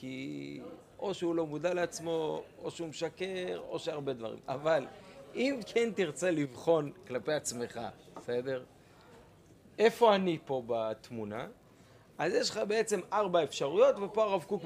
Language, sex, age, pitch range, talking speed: Hebrew, male, 40-59, 130-190 Hz, 135 wpm